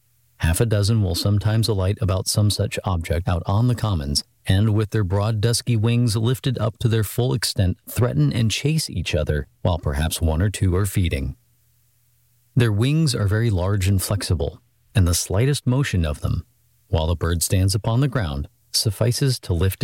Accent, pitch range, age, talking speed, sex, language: American, 95-120 Hz, 40-59, 185 wpm, male, English